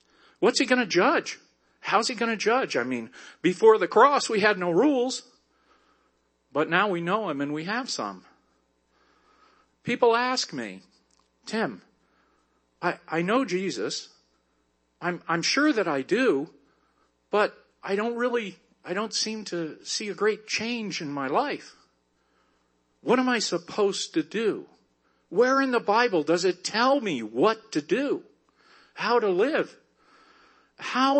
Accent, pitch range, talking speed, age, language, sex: American, 150-245 Hz, 150 wpm, 50-69, English, male